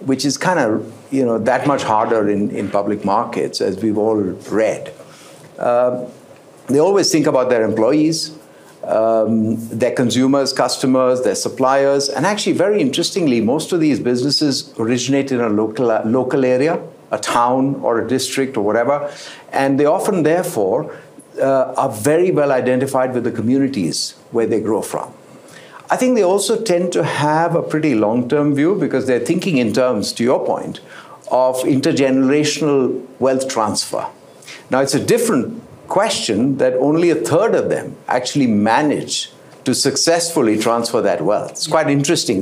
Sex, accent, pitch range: male, Indian, 120-145 Hz